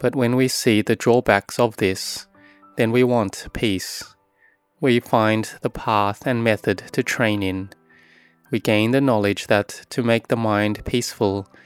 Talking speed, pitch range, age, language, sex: 160 wpm, 100-120 Hz, 20-39, English, male